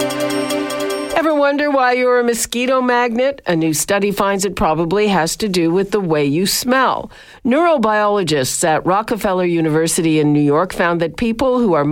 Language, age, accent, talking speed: English, 50-69, American, 160 wpm